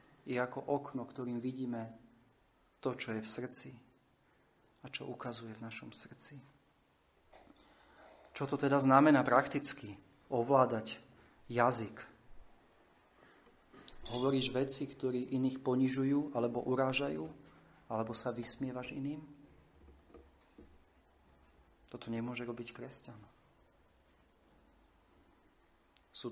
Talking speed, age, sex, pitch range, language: 90 wpm, 40-59, male, 115-145 Hz, Slovak